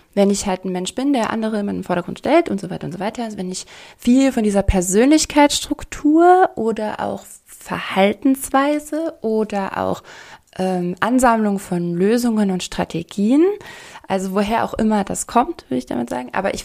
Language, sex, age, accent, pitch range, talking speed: German, female, 20-39, German, 195-255 Hz, 170 wpm